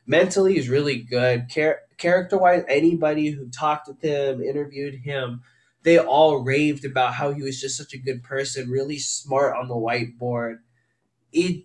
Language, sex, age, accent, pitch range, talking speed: English, male, 20-39, American, 125-165 Hz, 160 wpm